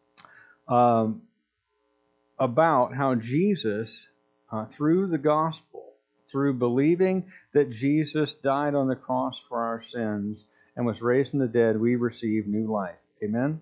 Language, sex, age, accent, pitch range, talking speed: English, male, 50-69, American, 110-145 Hz, 130 wpm